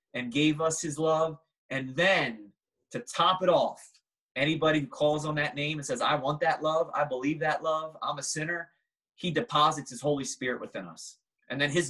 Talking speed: 200 wpm